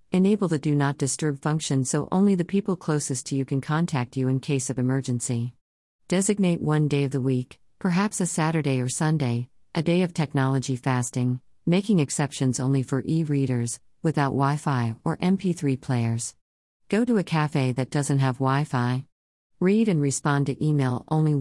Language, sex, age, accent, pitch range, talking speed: English, female, 50-69, American, 130-160 Hz, 170 wpm